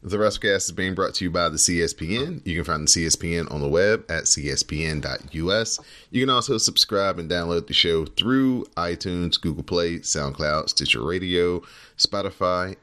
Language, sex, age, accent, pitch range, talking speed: English, male, 30-49, American, 75-95 Hz, 170 wpm